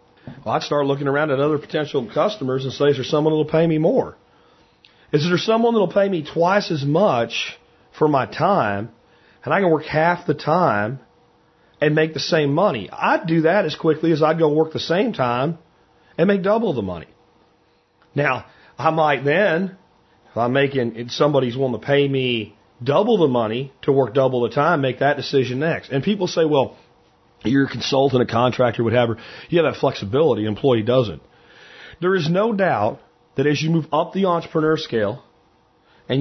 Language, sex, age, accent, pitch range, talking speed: English, male, 40-59, American, 130-165 Hz, 190 wpm